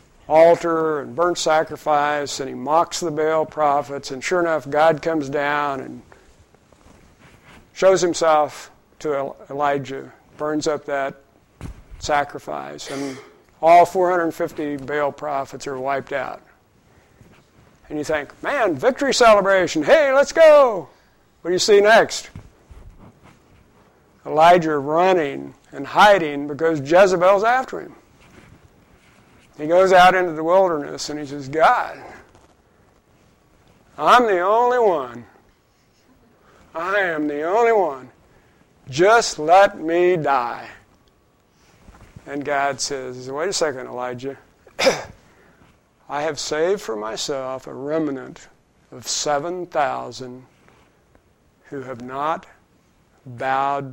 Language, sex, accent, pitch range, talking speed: English, male, American, 140-175 Hz, 110 wpm